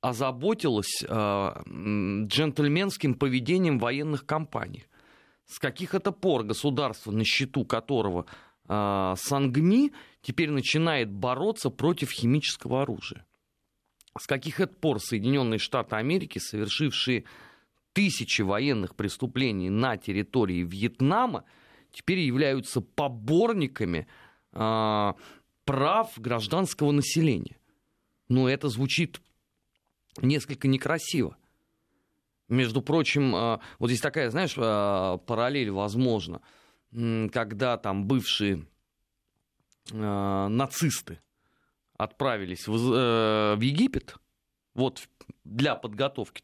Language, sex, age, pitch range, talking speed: Russian, male, 30-49, 110-150 Hz, 85 wpm